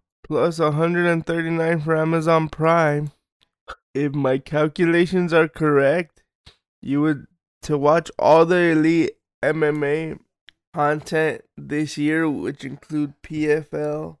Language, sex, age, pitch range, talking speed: English, male, 20-39, 140-160 Hz, 100 wpm